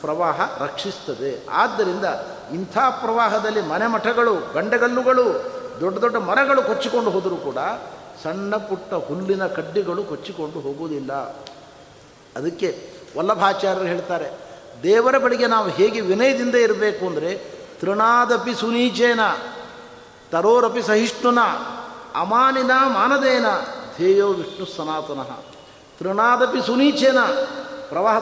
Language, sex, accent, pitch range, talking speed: Kannada, male, native, 190-265 Hz, 85 wpm